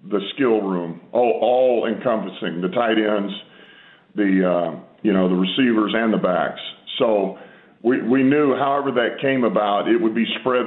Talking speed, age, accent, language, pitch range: 175 wpm, 40-59, American, English, 100-120 Hz